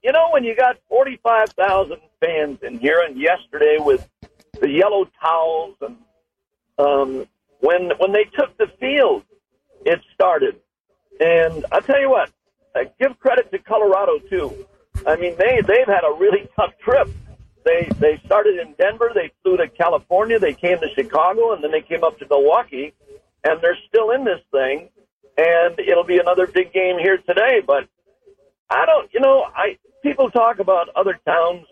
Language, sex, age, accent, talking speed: English, male, 50-69, American, 170 wpm